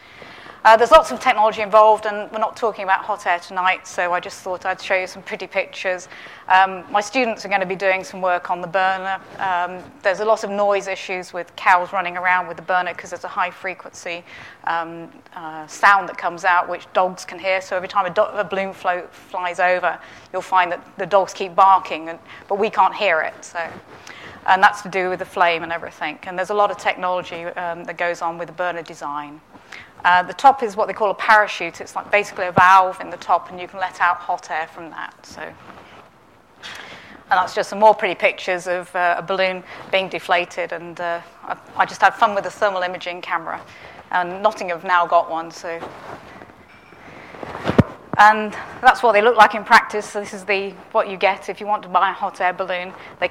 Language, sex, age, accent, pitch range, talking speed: English, female, 30-49, British, 180-200 Hz, 220 wpm